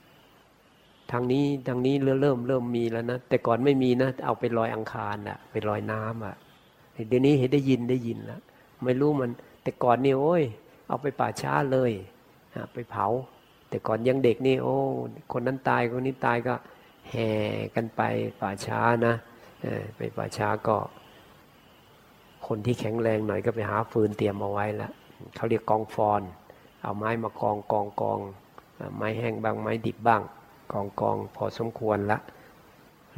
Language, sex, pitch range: Thai, male, 105-125 Hz